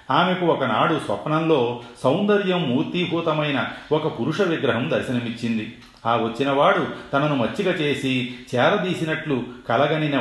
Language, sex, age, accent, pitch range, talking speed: Telugu, male, 40-59, native, 120-160 Hz, 95 wpm